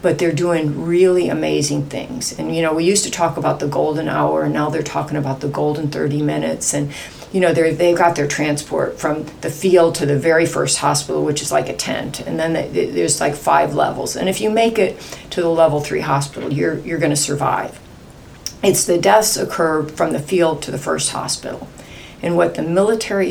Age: 40-59